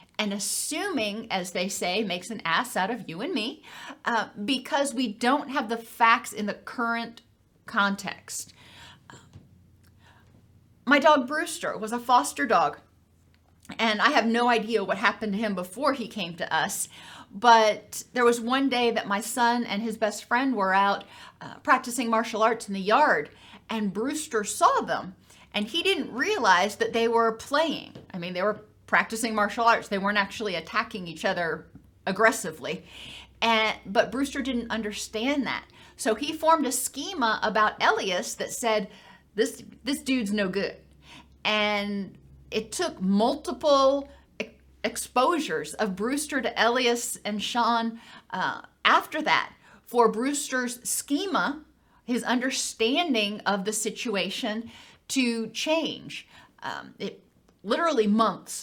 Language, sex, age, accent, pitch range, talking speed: English, female, 40-59, American, 210-255 Hz, 145 wpm